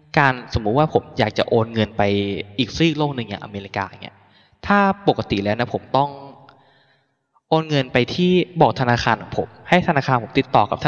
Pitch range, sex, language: 110-140 Hz, male, Thai